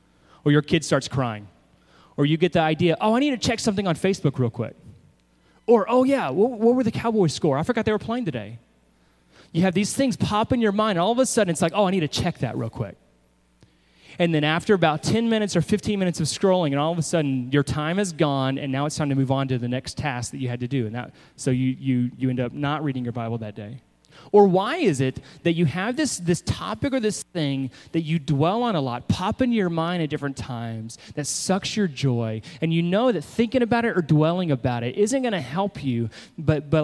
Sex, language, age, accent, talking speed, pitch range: male, English, 30-49, American, 255 wpm, 125-190 Hz